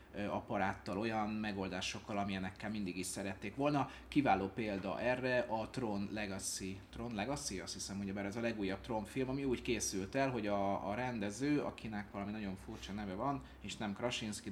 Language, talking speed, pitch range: Hungarian, 170 wpm, 100-125 Hz